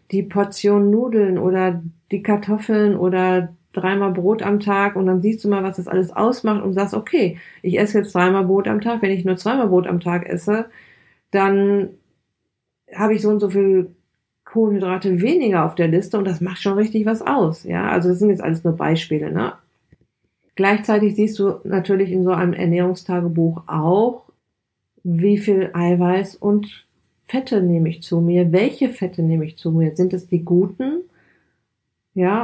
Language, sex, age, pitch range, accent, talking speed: German, female, 40-59, 180-210 Hz, German, 175 wpm